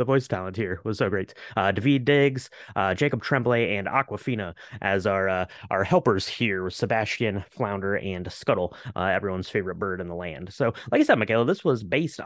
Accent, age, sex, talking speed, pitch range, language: American, 30-49, male, 195 wpm, 105-155 Hz, English